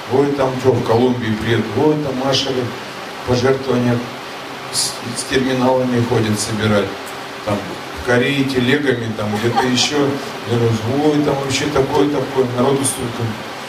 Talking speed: 130 wpm